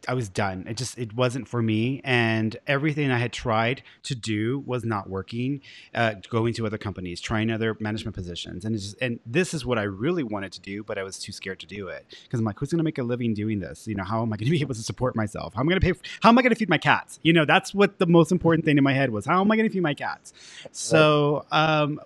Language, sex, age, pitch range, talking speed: English, male, 30-49, 110-150 Hz, 295 wpm